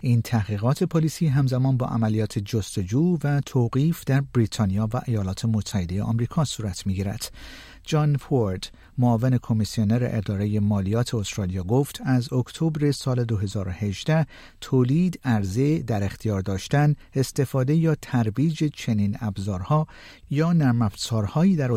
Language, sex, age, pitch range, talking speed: Persian, male, 50-69, 105-140 Hz, 120 wpm